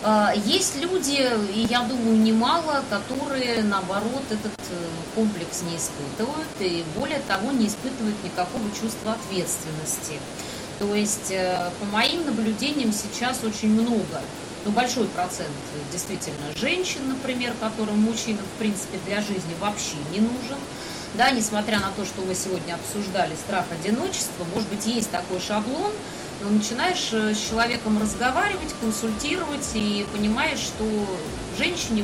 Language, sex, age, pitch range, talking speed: Russian, female, 30-49, 200-250 Hz, 125 wpm